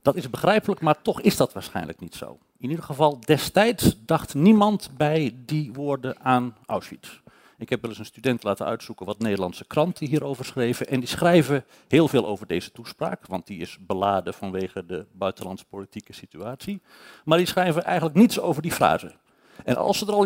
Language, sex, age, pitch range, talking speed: Dutch, male, 50-69, 110-160 Hz, 185 wpm